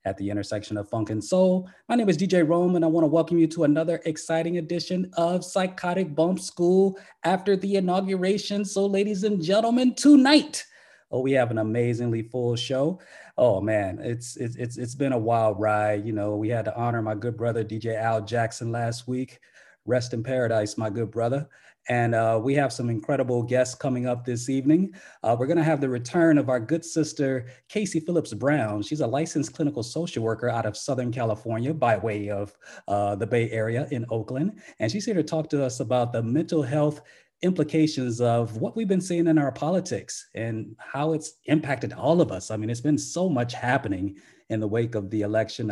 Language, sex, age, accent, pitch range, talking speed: English, male, 30-49, American, 115-165 Hz, 205 wpm